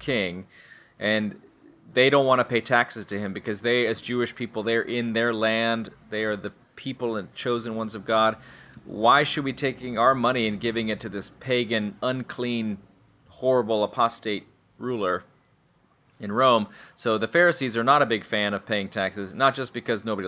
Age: 30-49